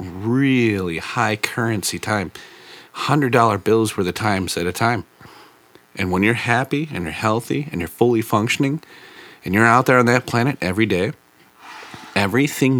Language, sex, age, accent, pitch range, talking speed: English, male, 30-49, American, 80-115 Hz, 155 wpm